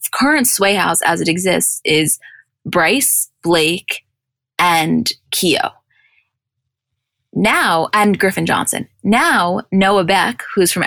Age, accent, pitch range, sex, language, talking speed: 20-39, American, 165-200 Hz, female, English, 110 wpm